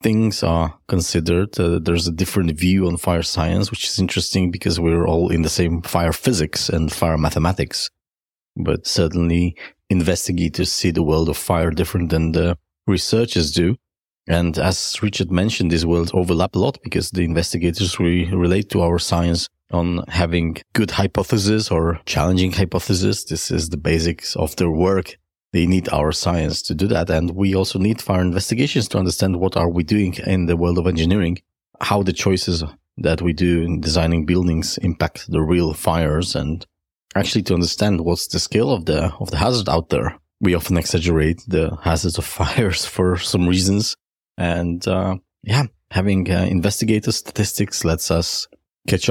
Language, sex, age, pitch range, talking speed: English, male, 30-49, 85-95 Hz, 170 wpm